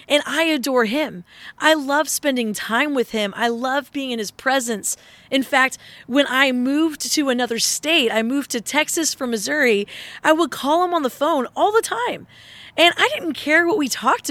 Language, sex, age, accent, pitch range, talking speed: English, female, 20-39, American, 225-290 Hz, 195 wpm